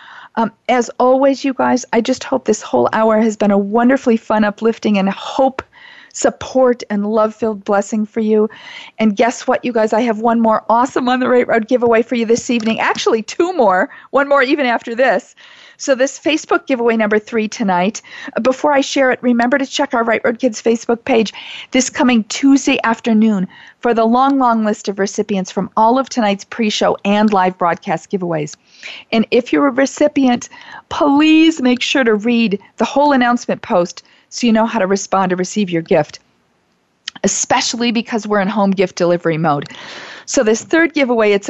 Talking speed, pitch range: 190 wpm, 215-275 Hz